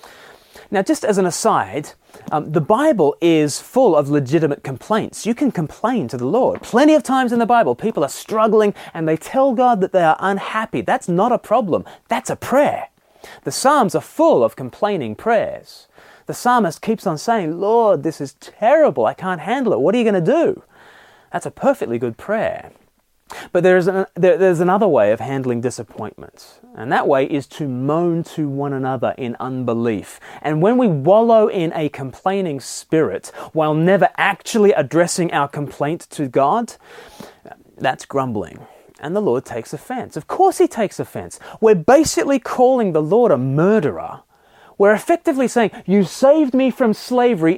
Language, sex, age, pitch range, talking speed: English, male, 30-49, 155-235 Hz, 175 wpm